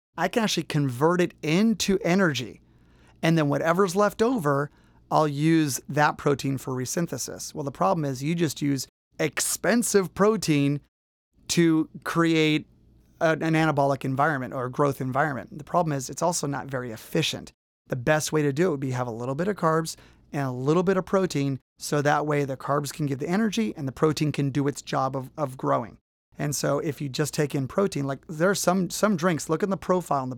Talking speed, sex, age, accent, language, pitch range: 205 wpm, male, 30-49, American, English, 135-170 Hz